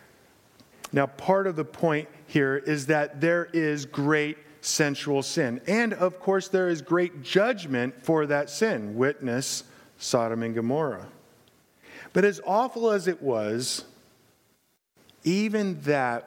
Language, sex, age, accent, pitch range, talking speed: English, male, 50-69, American, 135-180 Hz, 130 wpm